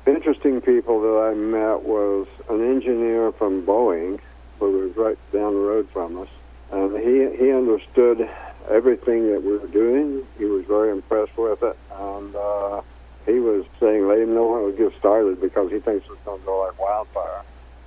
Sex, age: male, 60-79